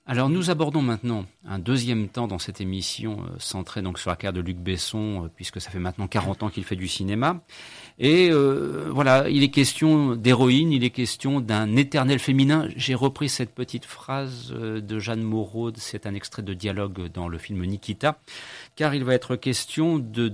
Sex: male